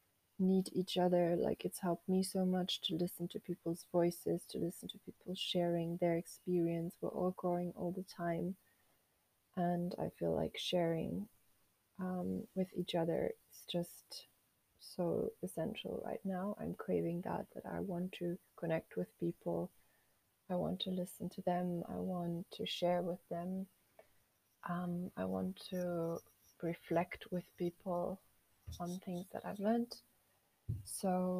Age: 20-39